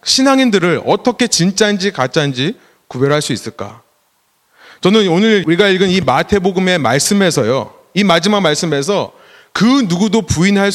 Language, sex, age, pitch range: Korean, male, 30-49, 155-225 Hz